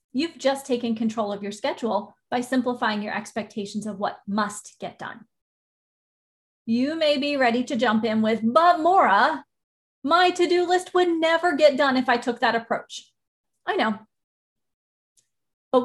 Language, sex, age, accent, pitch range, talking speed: English, female, 30-49, American, 220-285 Hz, 155 wpm